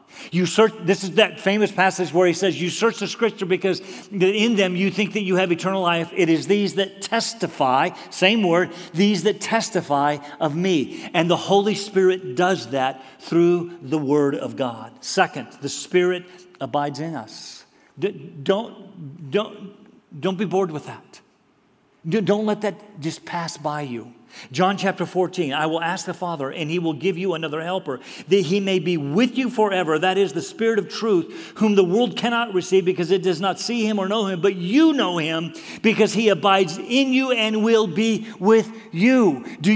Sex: male